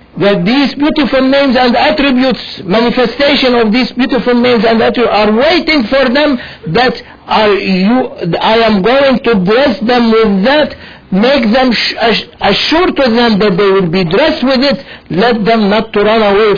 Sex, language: male, English